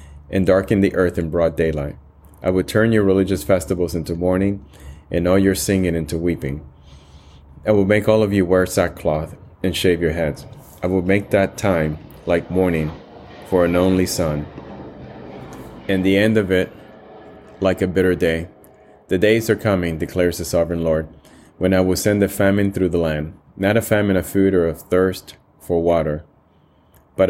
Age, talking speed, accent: 30-49, 180 wpm, American